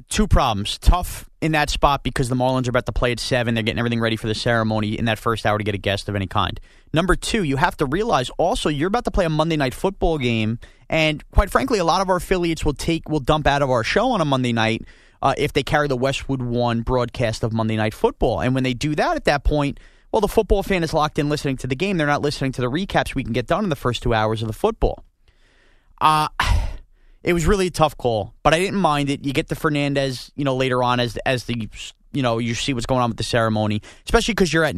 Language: English